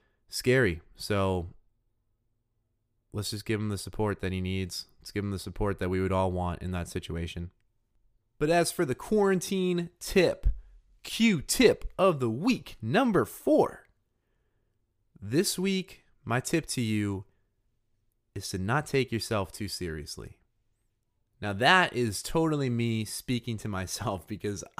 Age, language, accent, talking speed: 30-49, English, American, 140 wpm